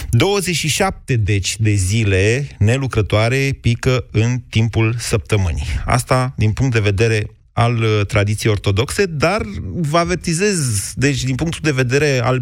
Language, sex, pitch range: Romanian, male, 105-140 Hz